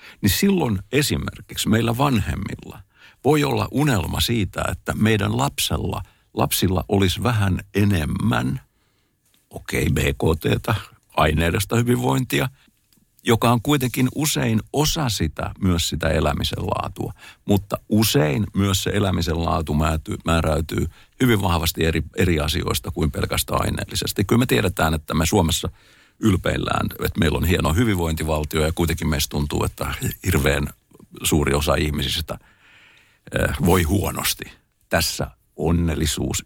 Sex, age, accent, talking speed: male, 60-79, native, 115 wpm